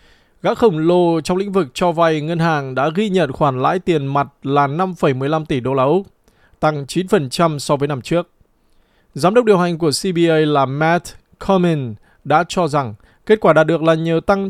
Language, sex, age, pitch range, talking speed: Vietnamese, male, 20-39, 140-185 Hz, 200 wpm